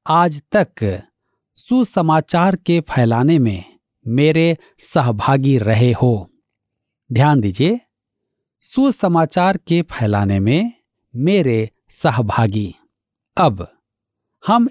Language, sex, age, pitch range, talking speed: Hindi, male, 60-79, 115-180 Hz, 80 wpm